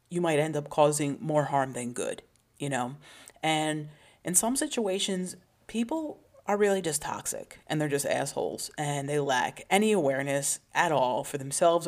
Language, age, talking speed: English, 30-49, 165 wpm